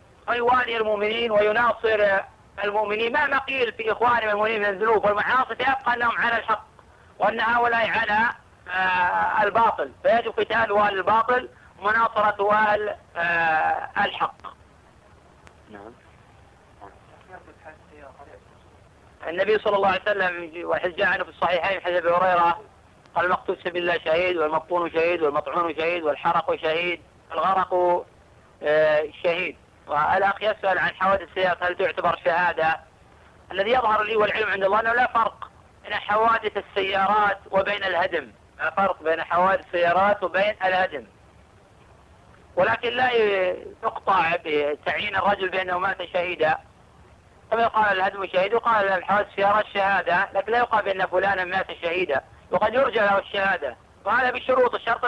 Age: 40-59